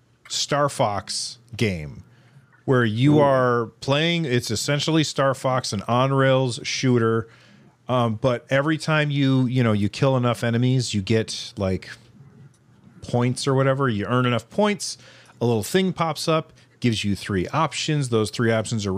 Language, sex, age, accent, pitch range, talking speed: English, male, 40-59, American, 110-135 Hz, 155 wpm